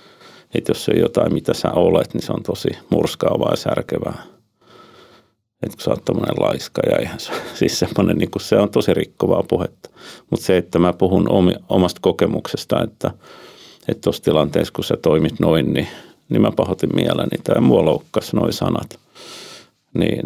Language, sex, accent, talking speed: Finnish, male, native, 170 wpm